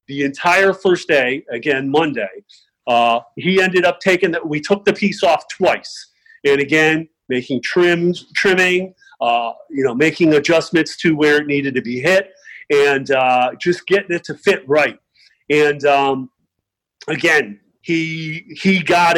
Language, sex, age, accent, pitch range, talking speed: English, male, 40-59, American, 145-180 Hz, 155 wpm